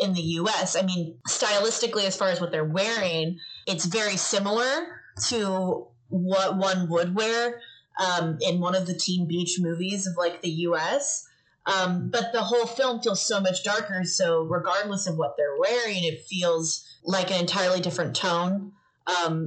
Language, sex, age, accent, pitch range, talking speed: English, female, 30-49, American, 165-195 Hz, 170 wpm